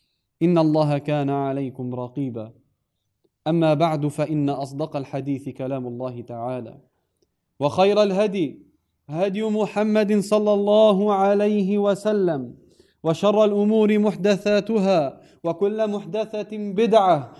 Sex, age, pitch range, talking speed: male, 20-39, 130-190 Hz, 95 wpm